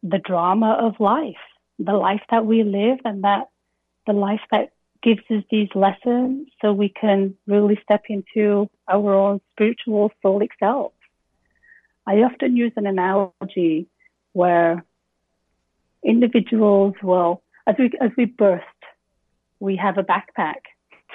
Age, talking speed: 30-49, 130 wpm